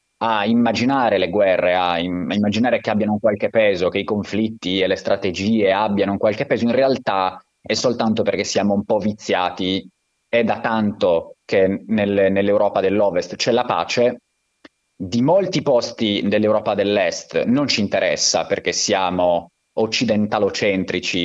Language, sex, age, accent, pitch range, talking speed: Italian, male, 30-49, native, 95-115 Hz, 140 wpm